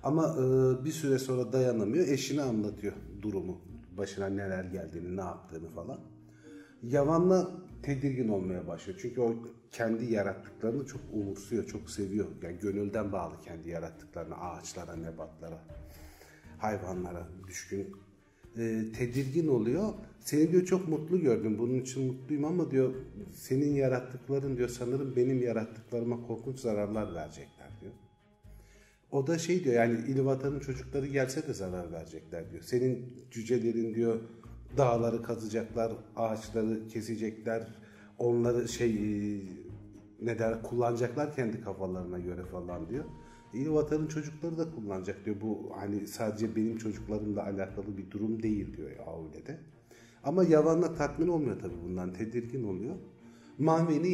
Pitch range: 100-130 Hz